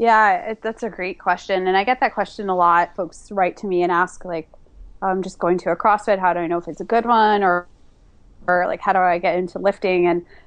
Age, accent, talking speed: 20-39, American, 260 wpm